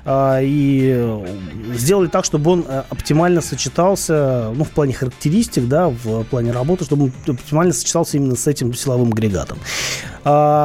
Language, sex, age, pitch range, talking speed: Russian, male, 30-49, 125-160 Hz, 140 wpm